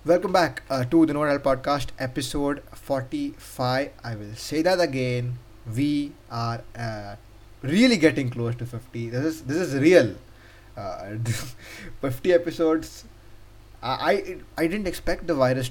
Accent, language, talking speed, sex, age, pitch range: Indian, English, 140 wpm, male, 20-39, 115-150 Hz